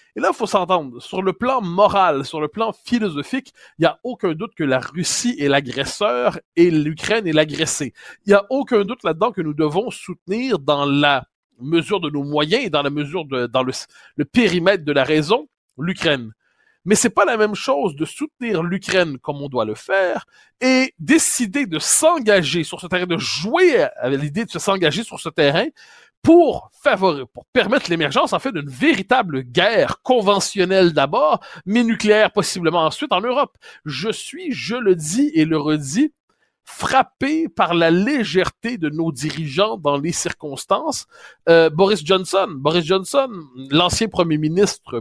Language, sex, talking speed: French, male, 175 wpm